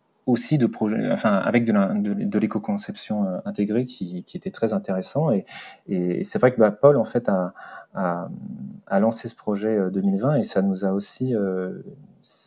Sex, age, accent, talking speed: male, 30-49, French, 185 wpm